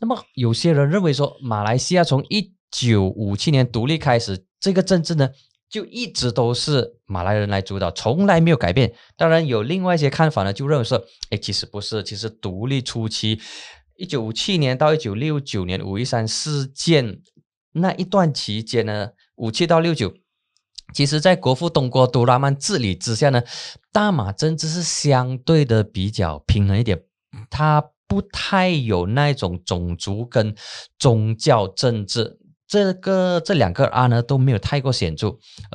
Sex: male